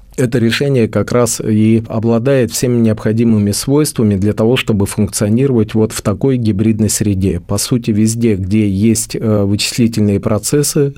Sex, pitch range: male, 105-120 Hz